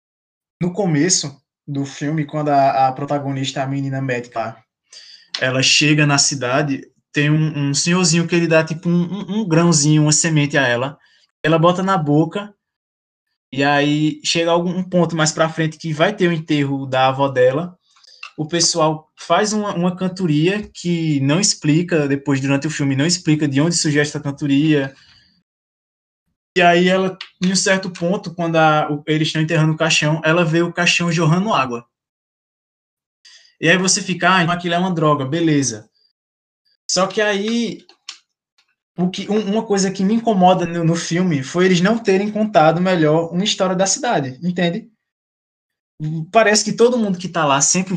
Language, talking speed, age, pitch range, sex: Portuguese, 160 wpm, 20-39, 145-185 Hz, male